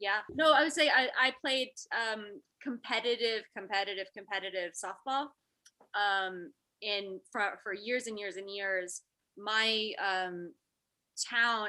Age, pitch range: 20-39, 185-225 Hz